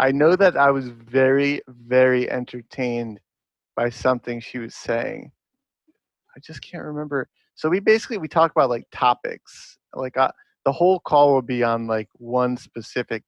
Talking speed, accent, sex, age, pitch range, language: 165 wpm, American, male, 30-49, 125-145 Hz, English